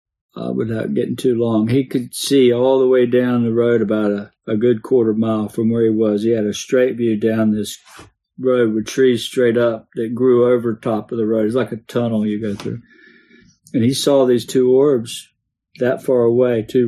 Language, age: English, 50-69